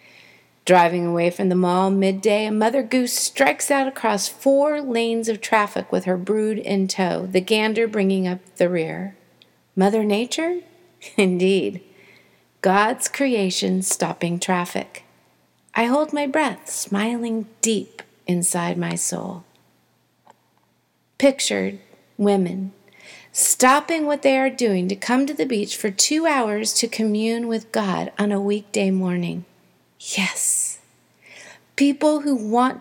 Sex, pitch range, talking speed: female, 190-255 Hz, 130 wpm